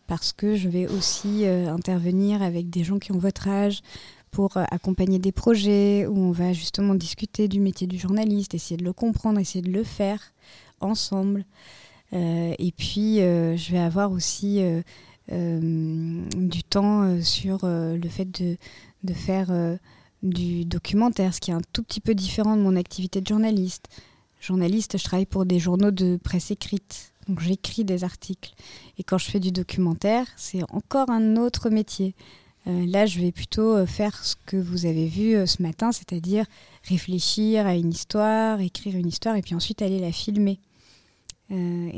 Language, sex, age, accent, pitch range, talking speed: French, female, 20-39, French, 175-205 Hz, 180 wpm